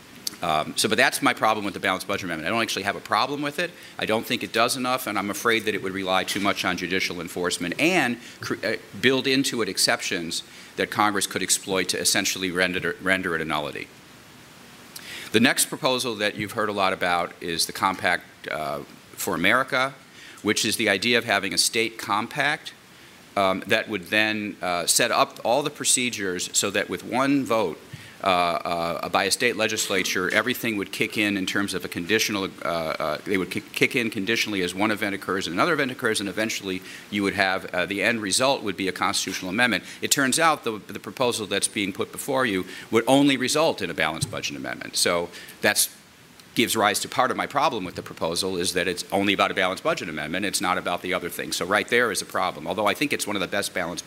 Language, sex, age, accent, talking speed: English, male, 40-59, American, 220 wpm